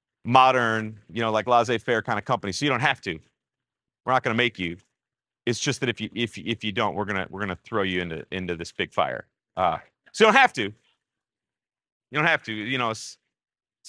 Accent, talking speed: American, 230 wpm